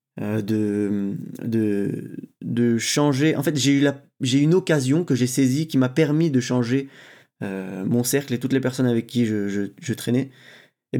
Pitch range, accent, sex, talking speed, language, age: 120-150 Hz, French, male, 185 wpm, French, 20-39